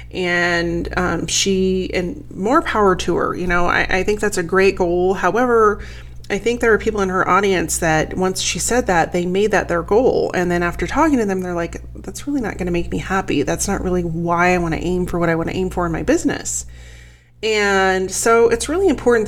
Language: English